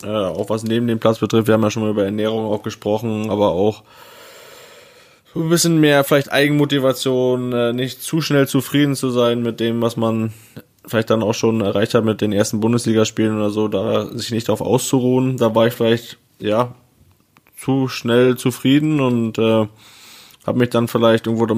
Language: German